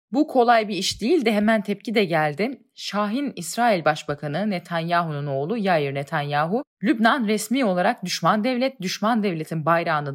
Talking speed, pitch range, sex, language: 150 wpm, 150-215 Hz, female, Turkish